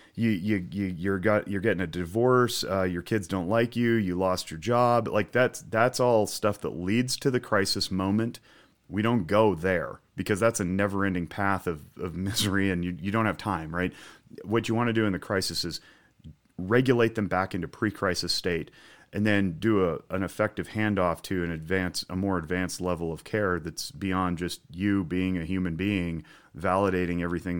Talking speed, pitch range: 195 wpm, 90-115 Hz